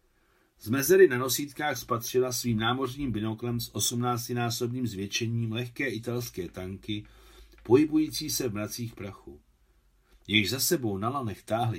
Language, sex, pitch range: Czech, male, 95-135 Hz